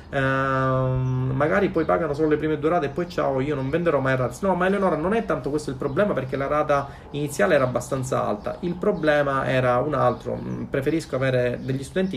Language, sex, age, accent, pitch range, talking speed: Italian, male, 30-49, native, 125-155 Hz, 200 wpm